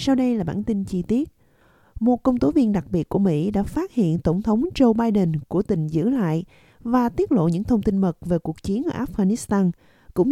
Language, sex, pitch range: Vietnamese, female, 175-245 Hz